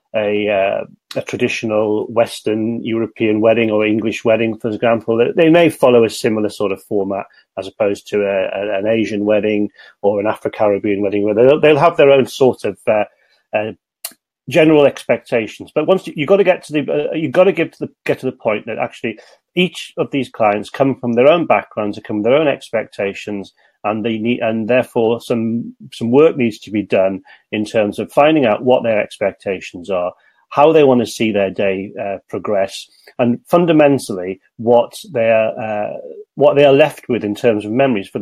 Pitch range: 105-135 Hz